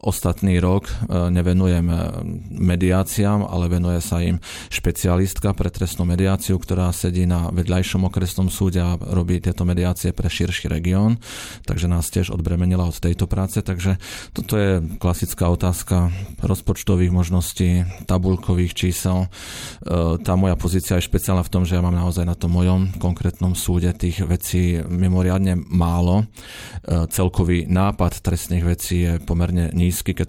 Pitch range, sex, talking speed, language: 90-95 Hz, male, 135 wpm, Slovak